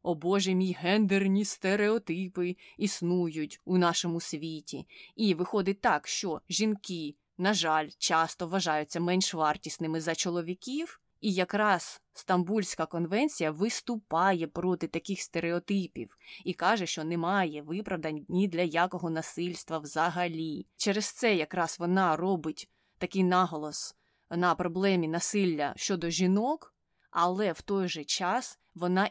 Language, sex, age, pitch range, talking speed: Ukrainian, female, 20-39, 165-200 Hz, 120 wpm